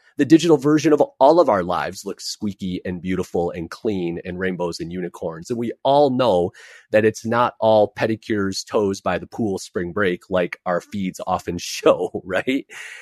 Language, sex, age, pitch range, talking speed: English, male, 30-49, 95-115 Hz, 180 wpm